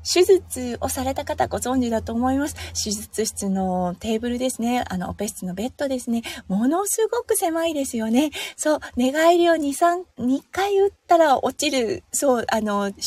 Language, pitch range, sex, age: Japanese, 200-265 Hz, female, 20-39